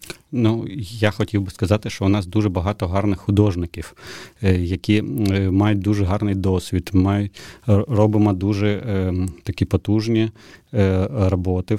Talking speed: 110 wpm